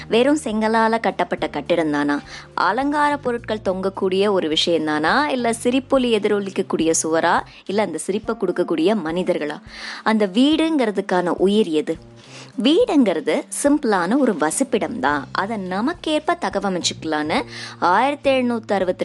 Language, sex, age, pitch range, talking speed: Tamil, male, 20-39, 175-260 Hz, 110 wpm